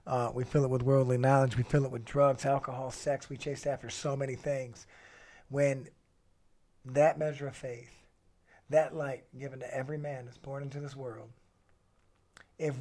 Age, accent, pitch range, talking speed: 50-69, American, 125-150 Hz, 175 wpm